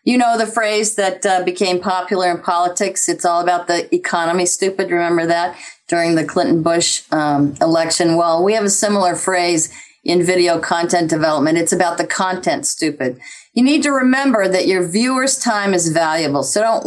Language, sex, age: English, female, 40-59